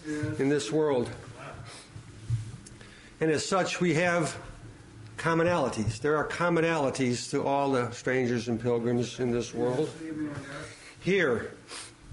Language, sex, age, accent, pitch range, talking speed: English, male, 60-79, American, 130-175 Hz, 110 wpm